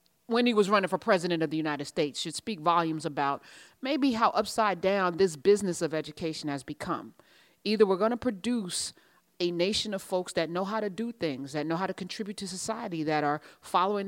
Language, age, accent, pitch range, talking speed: English, 40-59, American, 170-230 Hz, 210 wpm